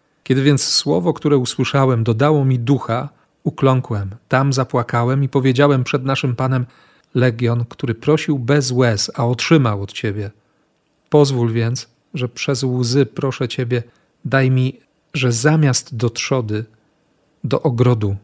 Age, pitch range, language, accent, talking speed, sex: 40-59, 115-140 Hz, Polish, native, 130 wpm, male